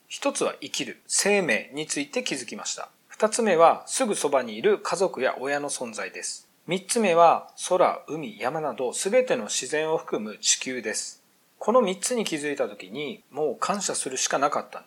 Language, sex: Japanese, male